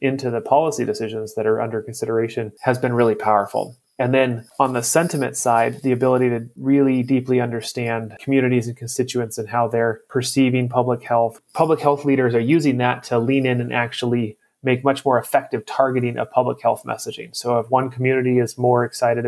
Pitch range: 120-135 Hz